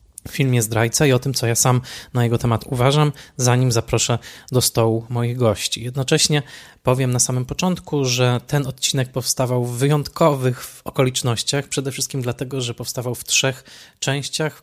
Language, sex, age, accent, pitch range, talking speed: Polish, male, 20-39, native, 120-140 Hz, 160 wpm